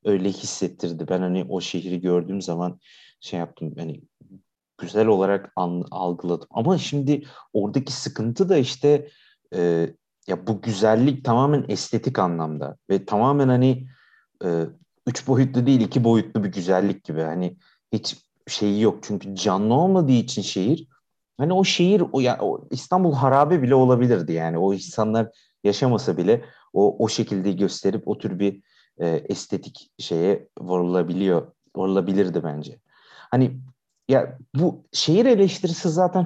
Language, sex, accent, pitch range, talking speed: Turkish, male, native, 95-135 Hz, 135 wpm